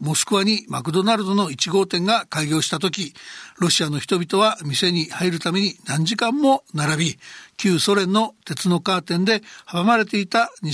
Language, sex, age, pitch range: Japanese, male, 60-79, 170-215 Hz